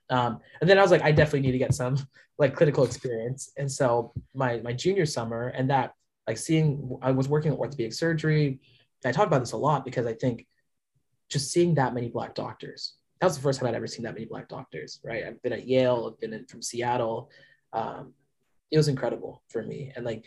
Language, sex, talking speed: English, male, 225 wpm